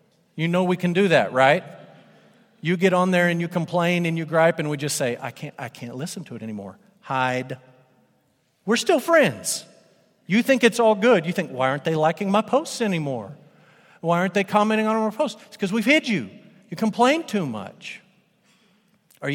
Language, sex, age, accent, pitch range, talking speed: English, male, 50-69, American, 150-205 Hz, 195 wpm